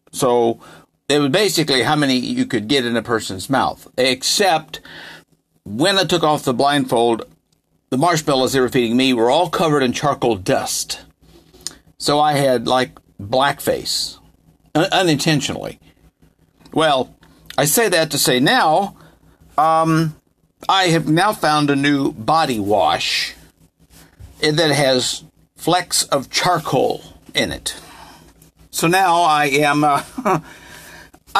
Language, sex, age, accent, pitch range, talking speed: English, male, 50-69, American, 125-160 Hz, 125 wpm